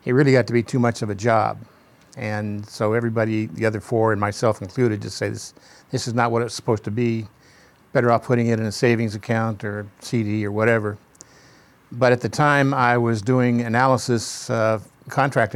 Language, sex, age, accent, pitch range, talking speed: English, male, 50-69, American, 110-125 Hz, 200 wpm